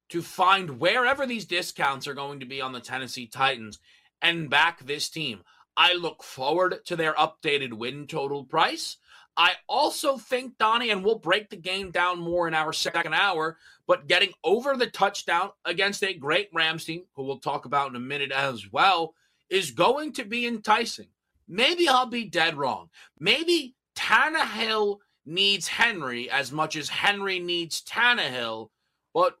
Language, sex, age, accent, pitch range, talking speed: English, male, 30-49, American, 145-210 Hz, 165 wpm